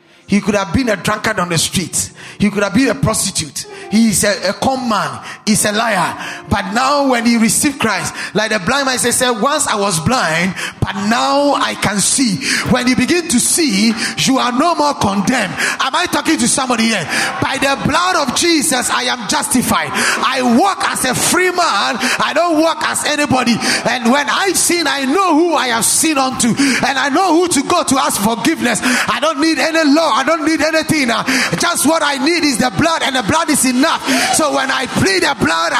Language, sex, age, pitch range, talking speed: English, male, 30-49, 245-335 Hz, 210 wpm